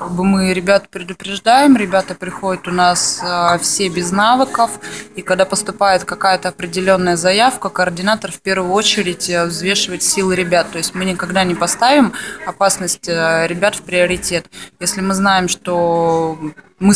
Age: 20-39